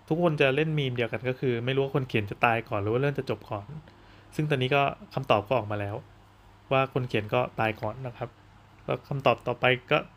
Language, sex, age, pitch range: Thai, male, 20-39, 110-140 Hz